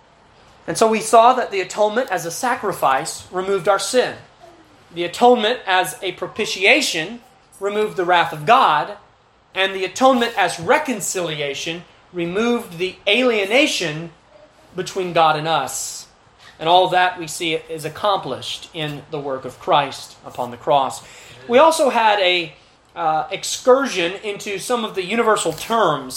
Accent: American